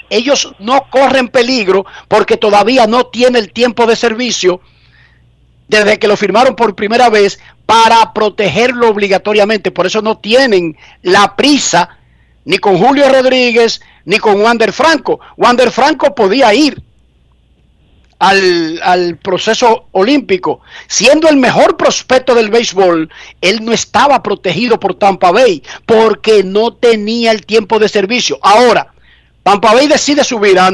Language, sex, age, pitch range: Spanish, male, 50-69, 190-250 Hz